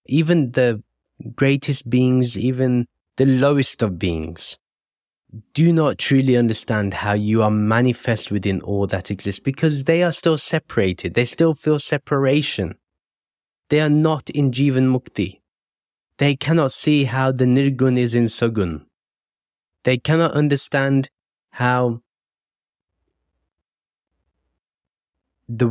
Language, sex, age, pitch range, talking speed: English, male, 20-39, 100-135 Hz, 115 wpm